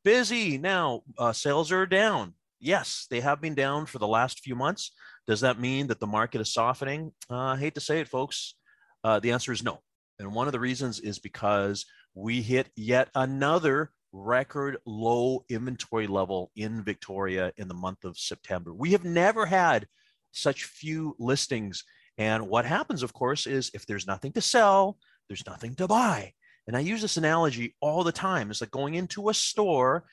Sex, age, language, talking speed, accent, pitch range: male, 30-49, English, 185 wpm, American, 105-145 Hz